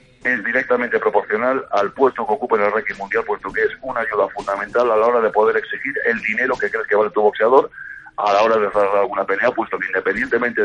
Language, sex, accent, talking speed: Spanish, male, Spanish, 230 wpm